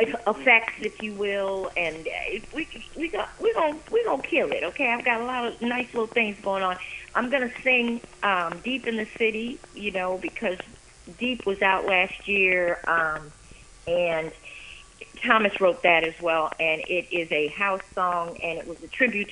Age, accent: 40-59, American